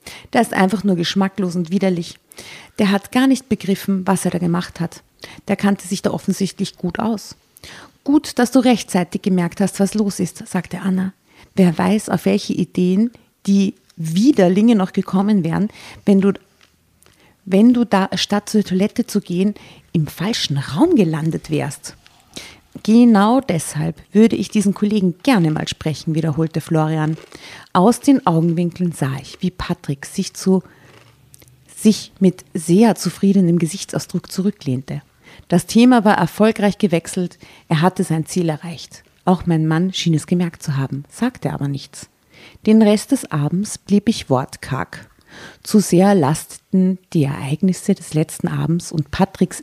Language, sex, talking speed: German, female, 150 wpm